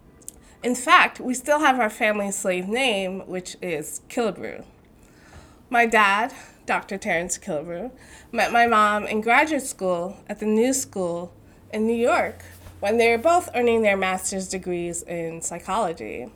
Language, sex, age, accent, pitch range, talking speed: English, female, 20-39, American, 185-240 Hz, 145 wpm